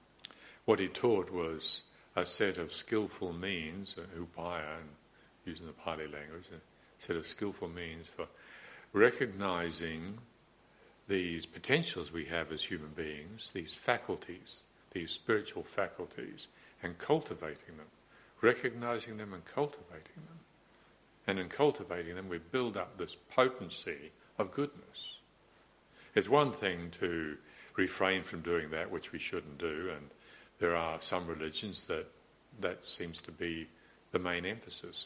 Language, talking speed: English, 135 wpm